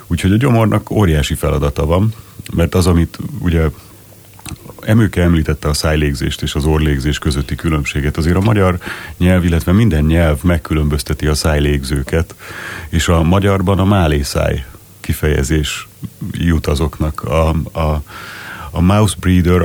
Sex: male